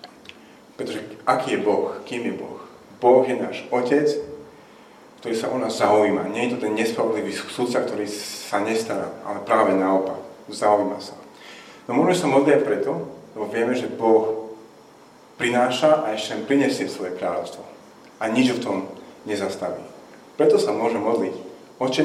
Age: 40-59